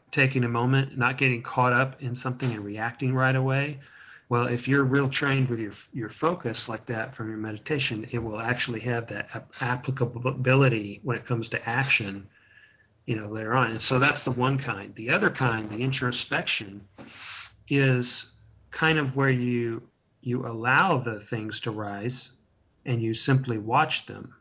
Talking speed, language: 170 wpm, English